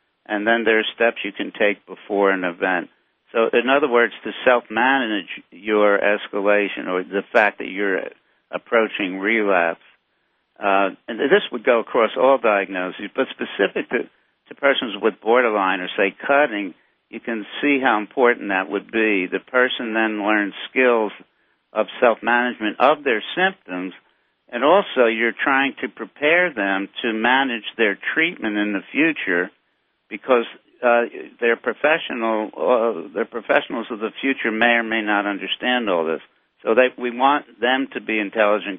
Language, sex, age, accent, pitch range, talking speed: English, male, 60-79, American, 105-120 Hz, 150 wpm